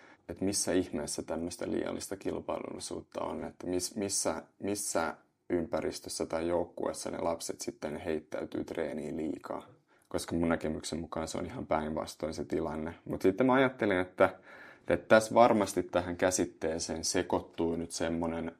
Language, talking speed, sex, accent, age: Finnish, 135 wpm, male, native, 20-39